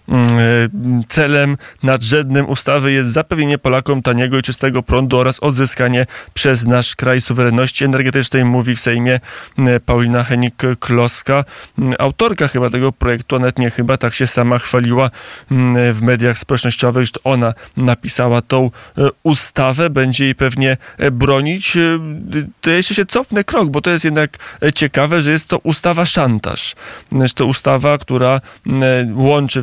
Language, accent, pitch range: Polish, native, 125-140 Hz